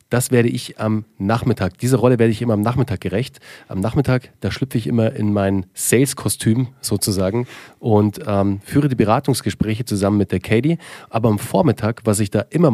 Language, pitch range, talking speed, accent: German, 105-130 Hz, 185 wpm, German